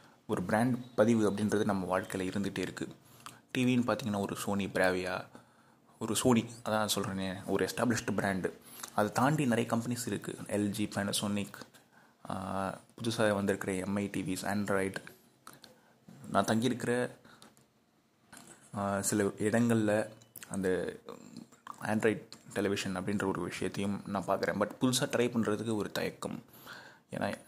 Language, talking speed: Tamil, 115 wpm